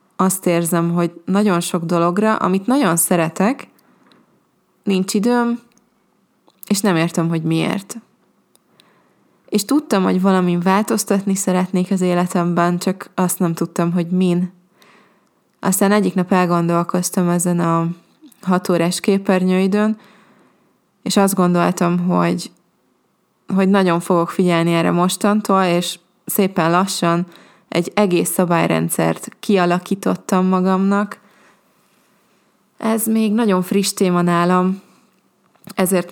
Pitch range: 175-200 Hz